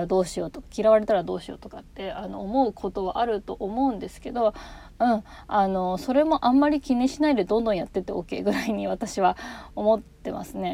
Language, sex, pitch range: Japanese, female, 185-250 Hz